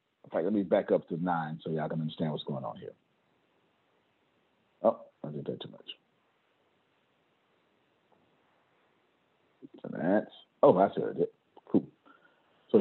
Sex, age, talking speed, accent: male, 50-69, 130 wpm, American